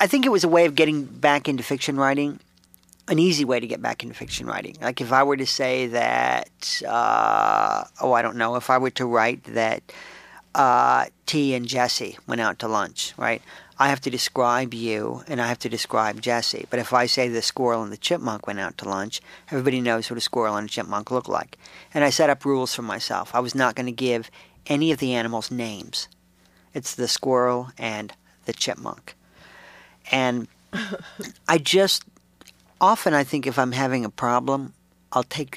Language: English